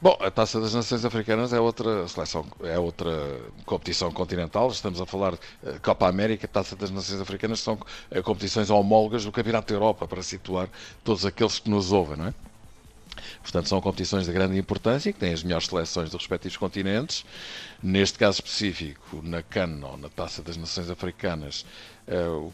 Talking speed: 170 wpm